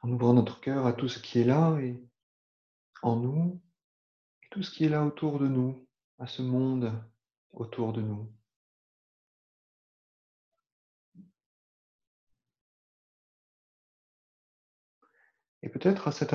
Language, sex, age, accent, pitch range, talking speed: French, male, 40-59, French, 110-140 Hz, 115 wpm